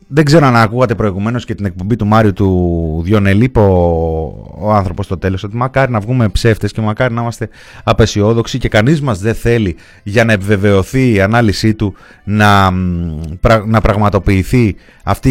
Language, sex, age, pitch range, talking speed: Greek, male, 30-49, 100-130 Hz, 160 wpm